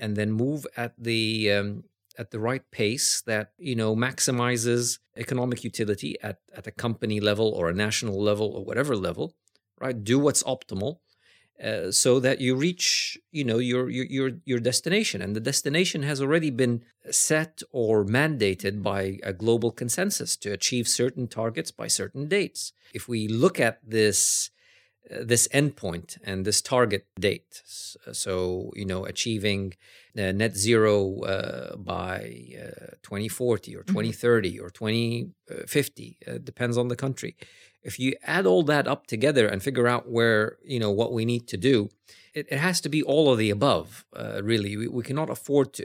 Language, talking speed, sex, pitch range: English, 170 wpm, male, 105-130 Hz